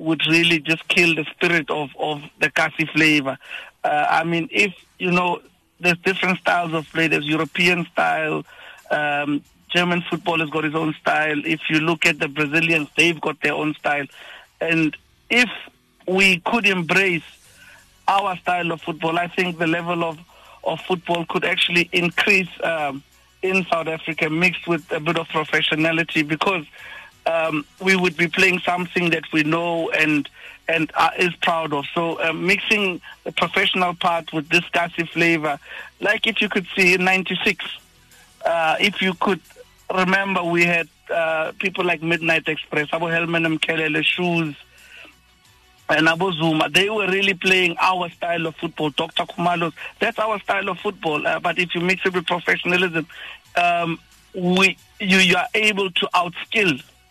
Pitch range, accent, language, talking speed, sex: 160-185 Hz, South African, English, 165 wpm, male